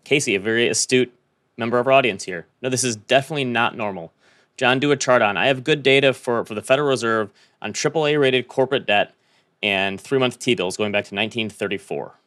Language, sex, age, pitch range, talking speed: English, male, 30-49, 110-135 Hz, 195 wpm